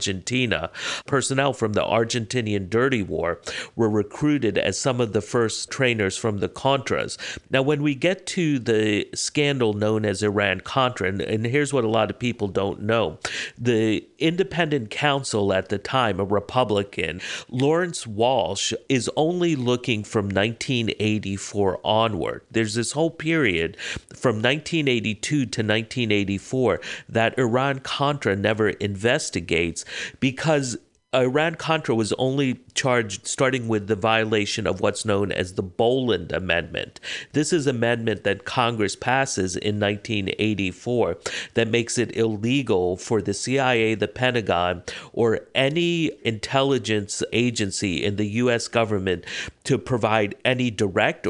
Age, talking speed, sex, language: 50-69, 130 wpm, male, English